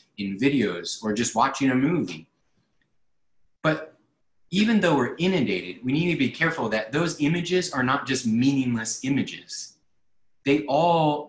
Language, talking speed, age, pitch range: English, 145 wpm, 30-49, 125-155 Hz